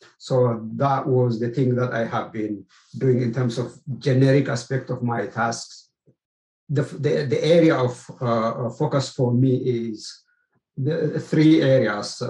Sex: male